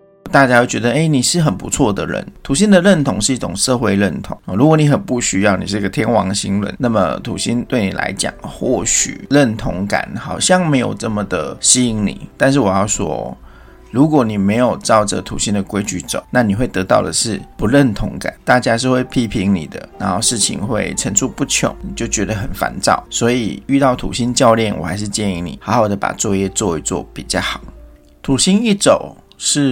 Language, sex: Chinese, male